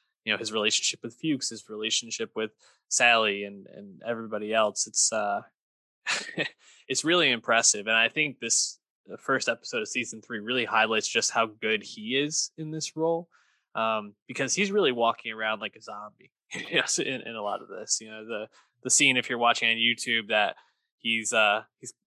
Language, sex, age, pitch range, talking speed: English, male, 20-39, 110-140 Hz, 195 wpm